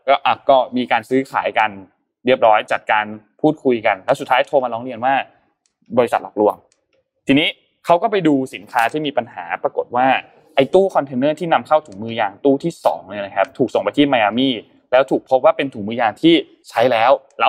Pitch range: 115-160 Hz